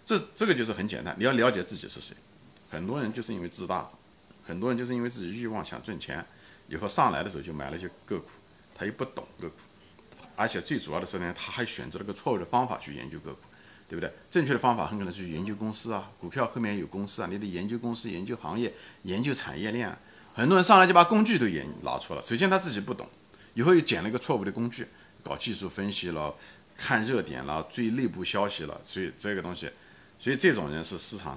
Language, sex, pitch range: Chinese, male, 90-125 Hz